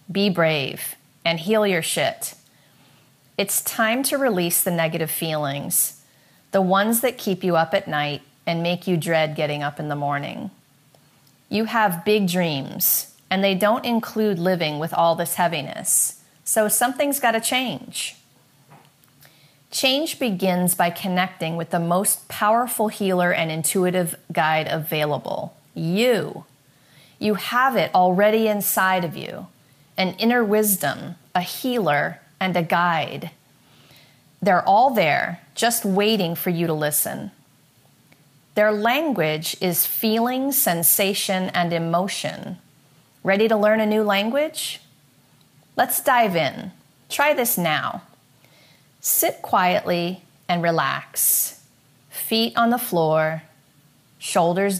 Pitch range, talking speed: 155-210 Hz, 125 wpm